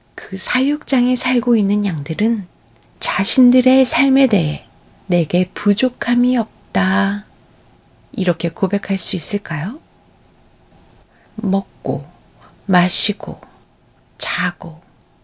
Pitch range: 175-235 Hz